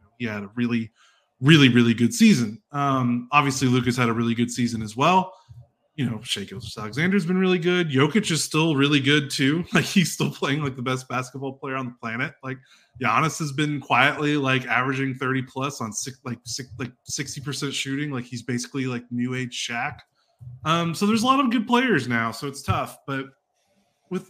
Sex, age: male, 20-39